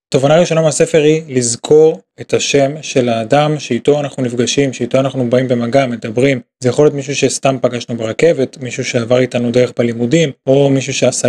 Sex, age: male, 20-39